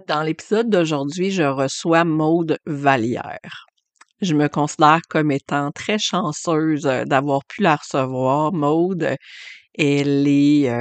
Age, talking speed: 50-69, 115 wpm